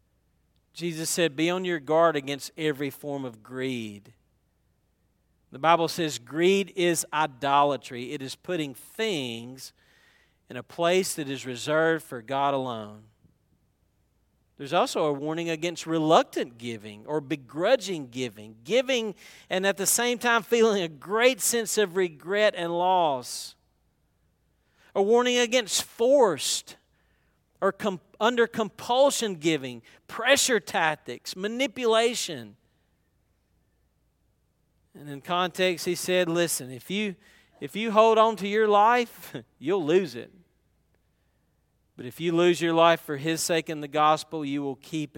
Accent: American